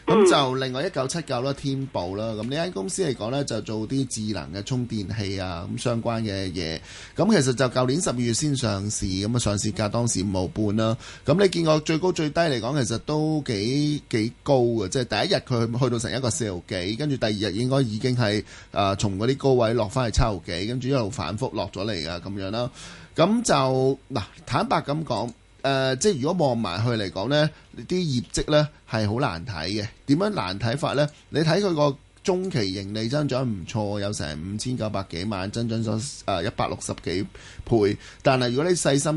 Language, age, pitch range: Chinese, 20-39, 105-135 Hz